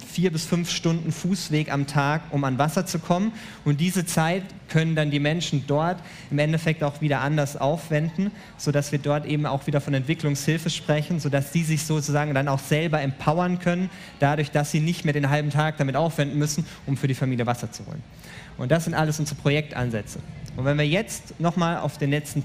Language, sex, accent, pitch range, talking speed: German, male, German, 150-185 Hz, 210 wpm